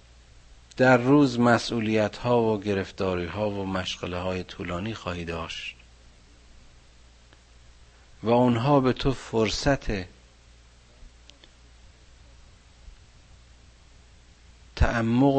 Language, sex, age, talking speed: Persian, male, 50-69, 70 wpm